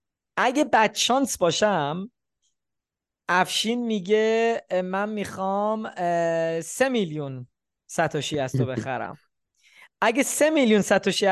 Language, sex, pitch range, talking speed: Persian, male, 150-200 Hz, 90 wpm